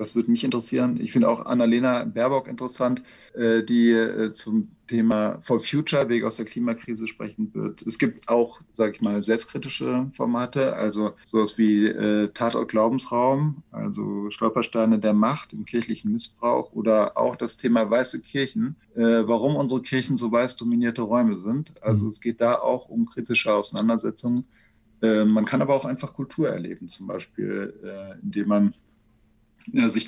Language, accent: German, German